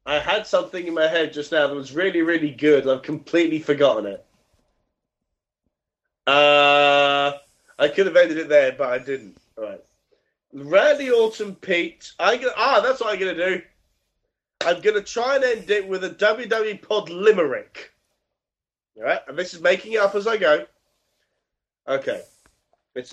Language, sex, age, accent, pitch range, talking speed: English, male, 30-49, British, 170-235 Hz, 165 wpm